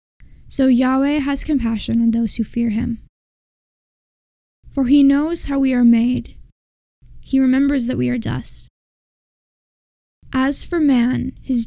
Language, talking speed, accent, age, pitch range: English, 135 wpm, American, 10-29, 230-265 Hz